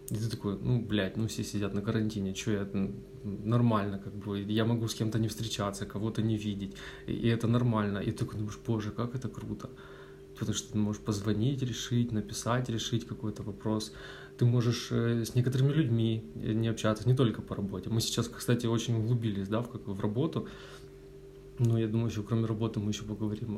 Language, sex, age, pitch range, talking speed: Russian, male, 20-39, 105-120 Hz, 195 wpm